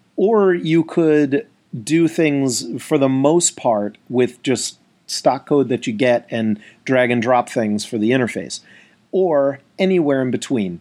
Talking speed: 155 wpm